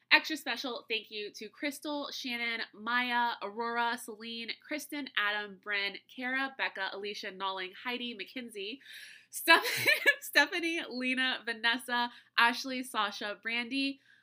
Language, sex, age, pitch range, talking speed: English, female, 20-39, 205-285 Hz, 110 wpm